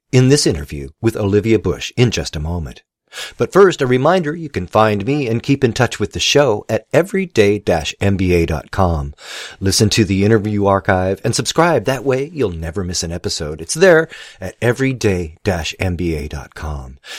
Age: 40-59